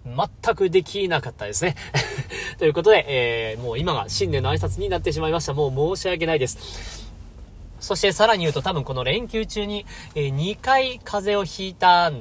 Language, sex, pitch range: Japanese, male, 120-195 Hz